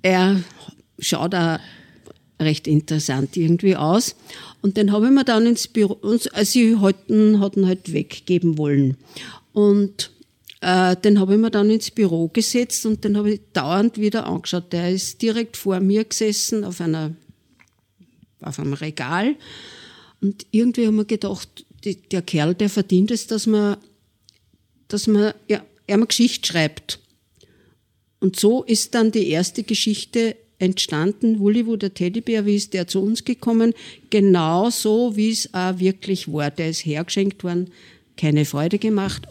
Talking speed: 150 wpm